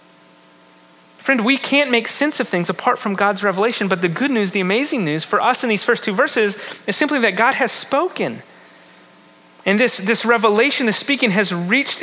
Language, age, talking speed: English, 30-49, 195 wpm